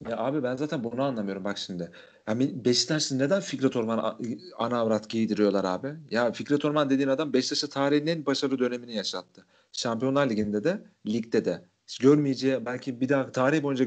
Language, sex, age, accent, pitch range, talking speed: Turkish, male, 40-59, native, 115-150 Hz, 170 wpm